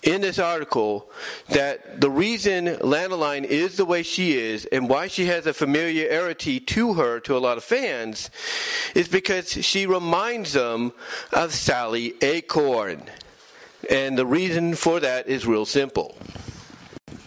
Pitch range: 130-195 Hz